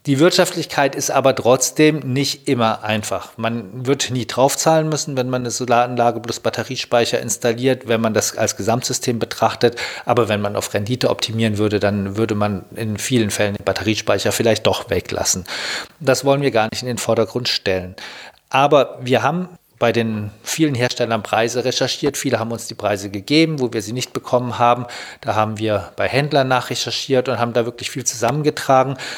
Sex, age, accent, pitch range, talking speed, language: male, 40-59, German, 110-135 Hz, 175 wpm, German